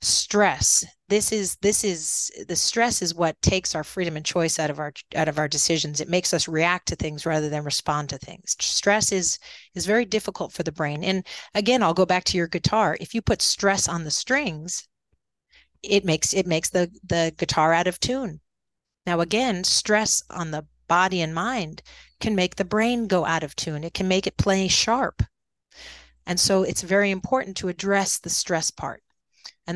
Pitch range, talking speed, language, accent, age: 160-195 Hz, 200 wpm, English, American, 40-59